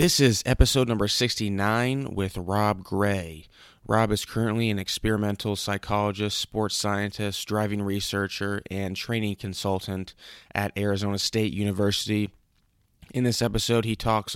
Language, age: English, 20-39